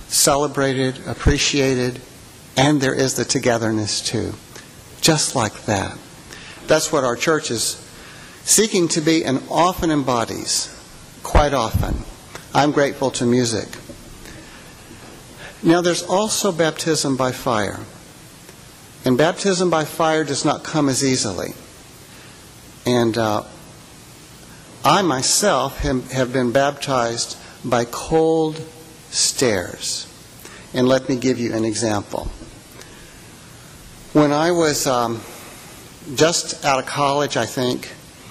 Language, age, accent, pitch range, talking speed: English, 60-79, American, 120-155 Hz, 110 wpm